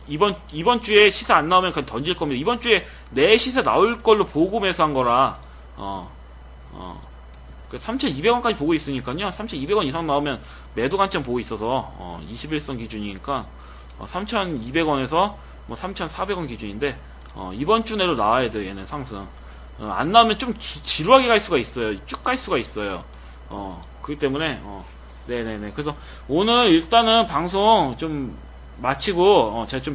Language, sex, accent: Korean, male, native